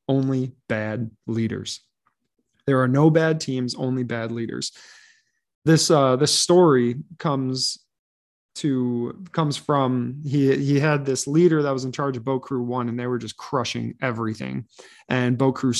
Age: 20-39